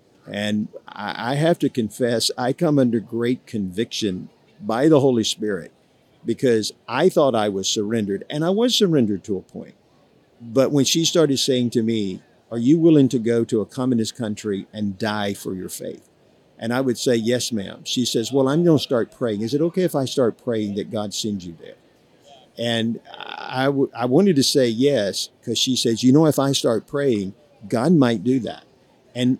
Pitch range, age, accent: 110-140 Hz, 50-69, American